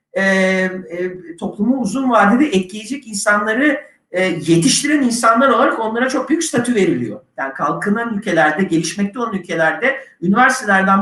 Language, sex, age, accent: Turkish, male, 50-69, native